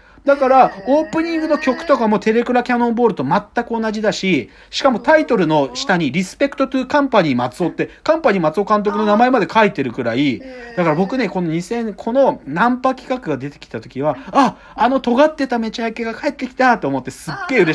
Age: 40-59